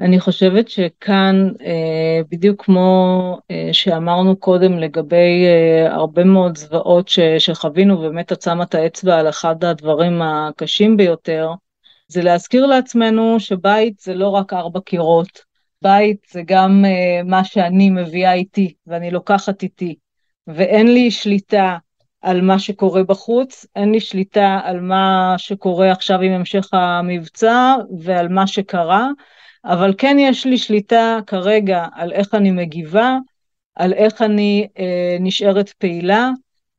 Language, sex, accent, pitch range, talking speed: Hebrew, female, native, 175-210 Hz, 120 wpm